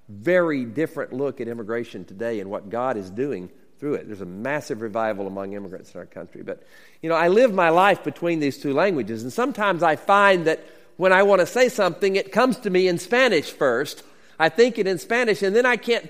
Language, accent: English, American